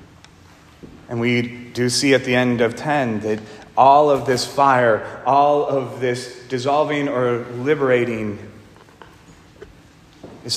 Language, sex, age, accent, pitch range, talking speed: English, male, 30-49, American, 115-145 Hz, 120 wpm